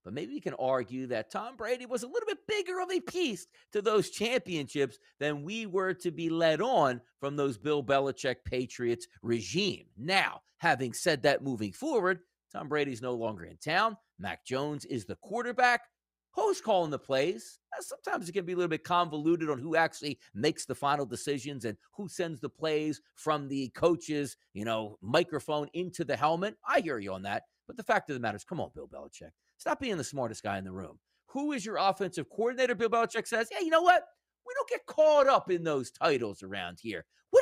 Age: 40-59